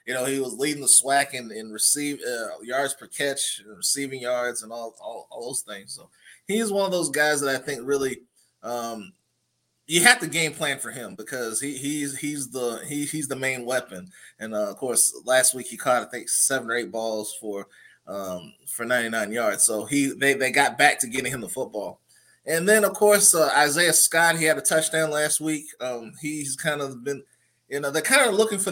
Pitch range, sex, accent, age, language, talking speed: 125-150 Hz, male, American, 20-39, English, 220 wpm